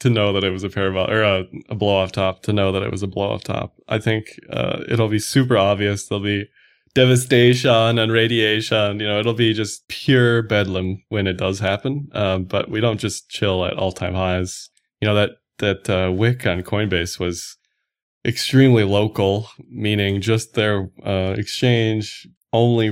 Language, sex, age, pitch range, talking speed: English, male, 20-39, 95-115 Hz, 190 wpm